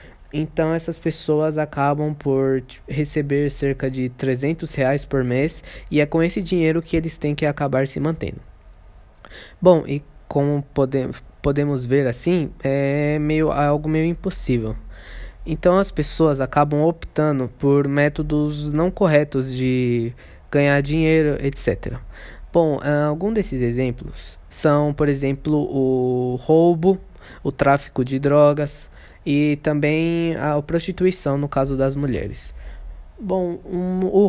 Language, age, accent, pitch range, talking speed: Portuguese, 20-39, Brazilian, 135-160 Hz, 125 wpm